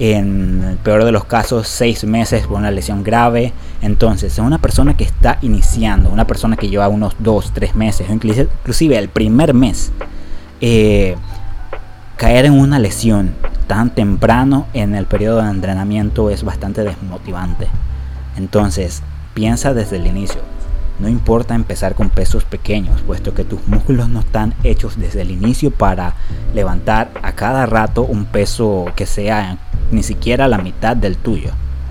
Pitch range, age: 95-115 Hz, 20-39